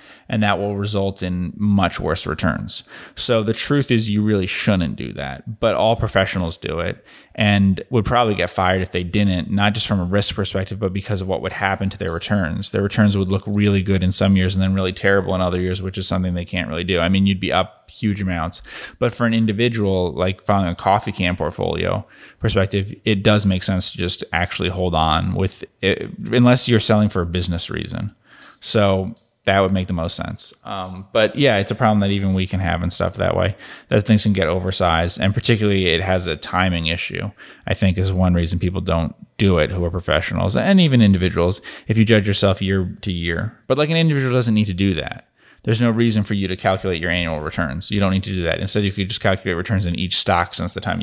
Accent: American